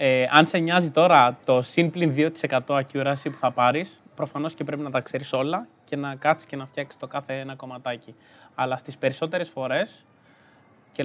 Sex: male